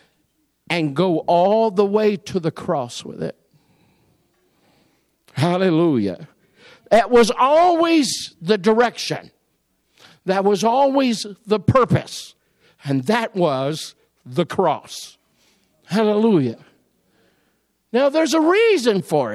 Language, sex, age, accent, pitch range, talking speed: English, male, 50-69, American, 170-270 Hz, 100 wpm